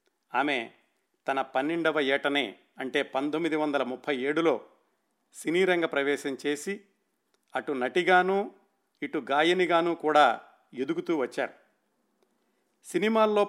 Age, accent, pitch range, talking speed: 50-69, native, 140-175 Hz, 85 wpm